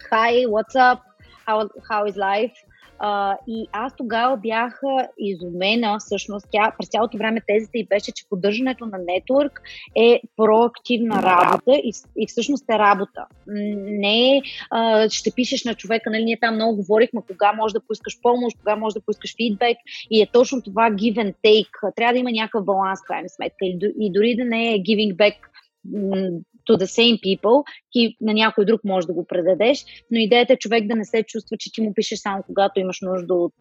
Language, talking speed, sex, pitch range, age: Bulgarian, 185 wpm, female, 200-240 Hz, 20-39